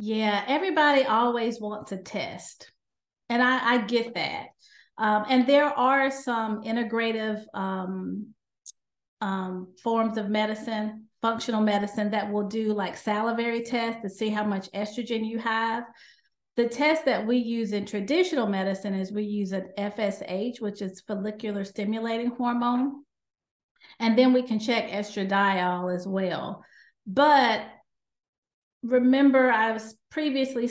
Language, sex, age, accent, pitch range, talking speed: English, female, 40-59, American, 210-245 Hz, 130 wpm